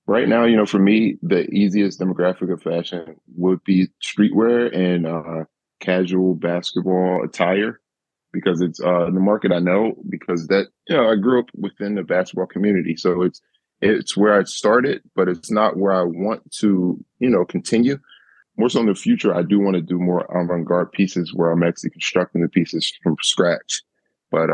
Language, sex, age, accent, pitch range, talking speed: English, male, 20-39, American, 90-100 Hz, 185 wpm